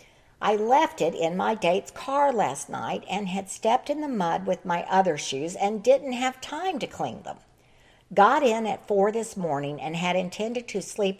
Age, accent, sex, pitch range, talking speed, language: 60-79, American, female, 170-215 Hz, 200 wpm, English